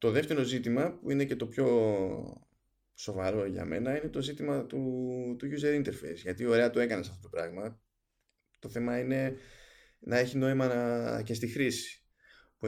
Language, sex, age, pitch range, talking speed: Greek, male, 20-39, 100-125 Hz, 165 wpm